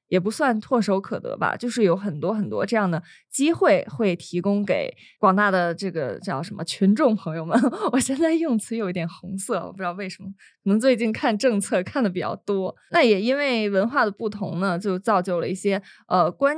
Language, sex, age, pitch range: Chinese, female, 20-39, 185-240 Hz